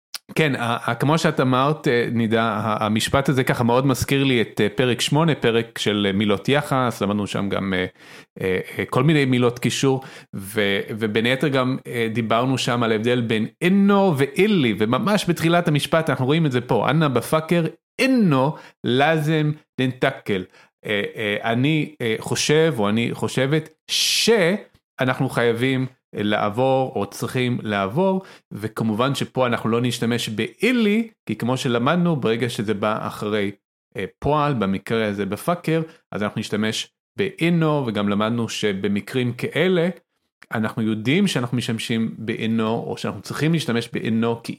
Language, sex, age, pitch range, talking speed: Hebrew, male, 30-49, 110-155 Hz, 125 wpm